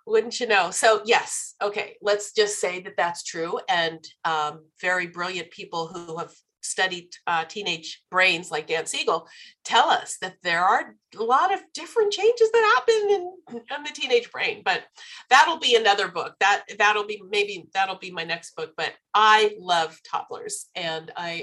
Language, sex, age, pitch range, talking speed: English, female, 40-59, 170-285 Hz, 175 wpm